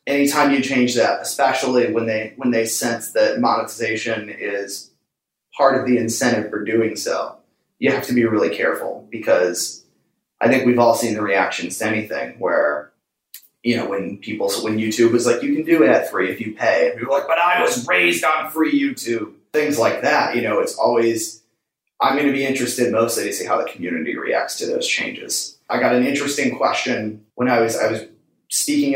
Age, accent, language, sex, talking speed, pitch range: 30-49, American, English, male, 205 wpm, 110-140 Hz